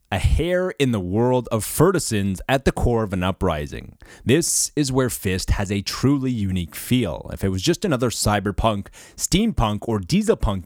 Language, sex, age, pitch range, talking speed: English, male, 30-49, 95-130 Hz, 175 wpm